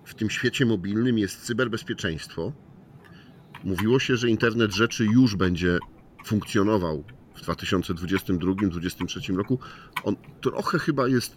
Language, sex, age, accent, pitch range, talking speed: Polish, male, 40-59, native, 95-125 Hz, 110 wpm